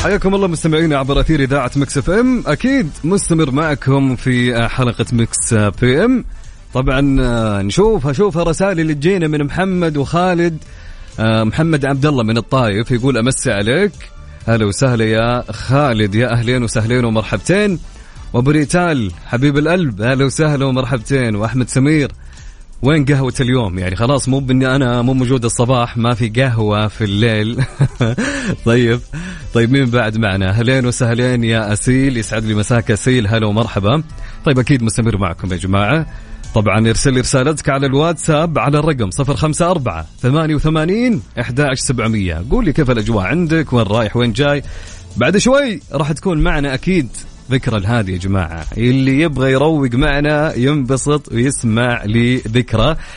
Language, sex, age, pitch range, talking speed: English, male, 30-49, 110-145 Hz, 140 wpm